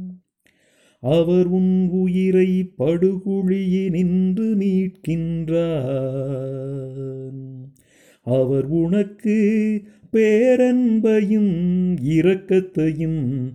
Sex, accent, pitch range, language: male, native, 155-185 Hz, Tamil